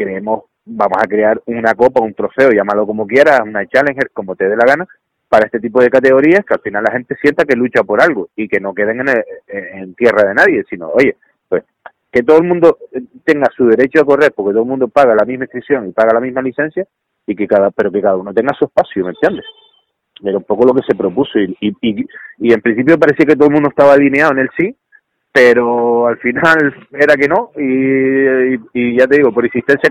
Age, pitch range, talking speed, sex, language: 30-49, 110-140 Hz, 235 wpm, male, Spanish